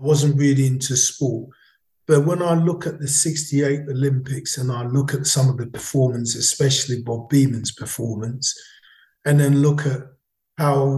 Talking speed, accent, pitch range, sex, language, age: 165 wpm, British, 130-150 Hz, male, English, 40-59